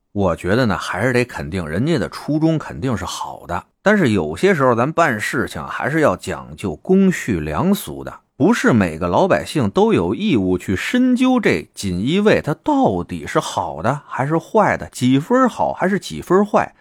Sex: male